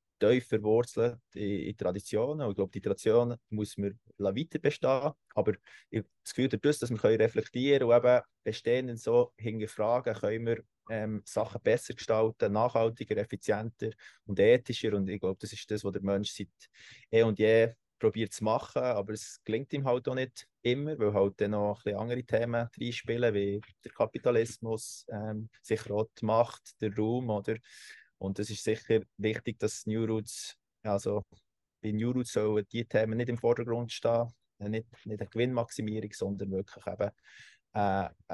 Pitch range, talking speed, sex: 105-120 Hz, 165 wpm, male